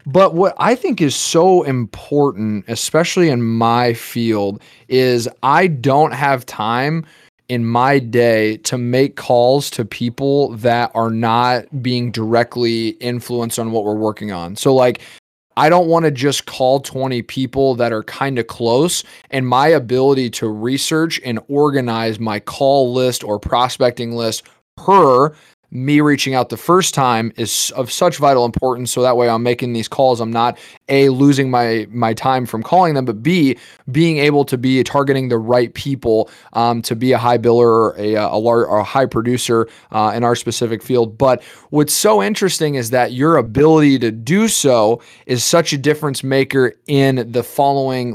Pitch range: 115-145 Hz